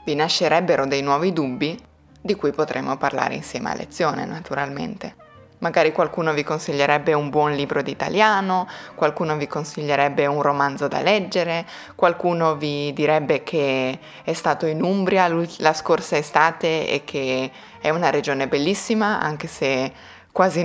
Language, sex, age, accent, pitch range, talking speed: Italian, female, 20-39, native, 140-170 Hz, 140 wpm